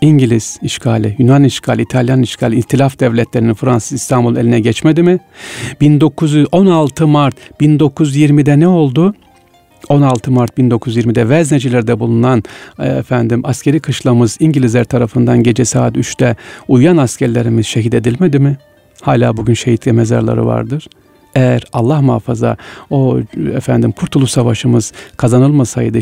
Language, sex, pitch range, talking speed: Turkish, male, 115-145 Hz, 115 wpm